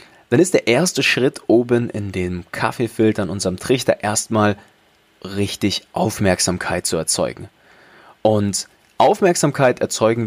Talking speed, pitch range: 115 wpm, 95-120 Hz